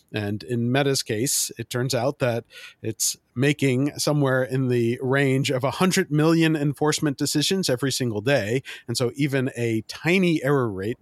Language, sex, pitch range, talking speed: English, male, 115-140 Hz, 160 wpm